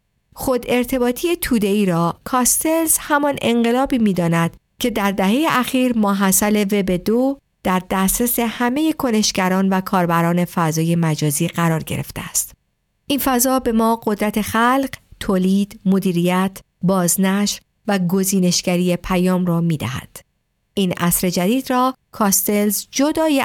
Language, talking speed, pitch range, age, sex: Persian, 120 wpm, 175-240 Hz, 50-69, female